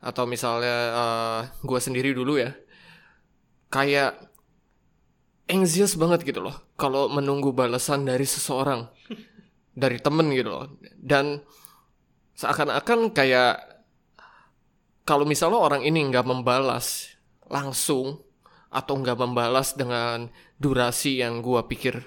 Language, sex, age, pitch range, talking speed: Indonesian, male, 20-39, 125-145 Hz, 105 wpm